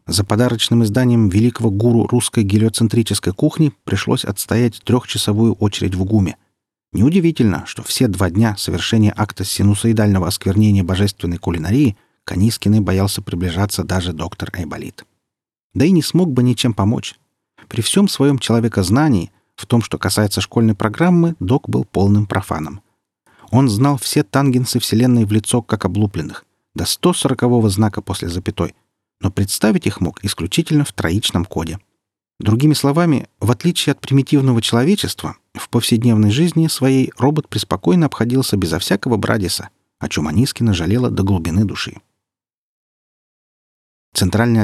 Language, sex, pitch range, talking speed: Russian, male, 95-125 Hz, 135 wpm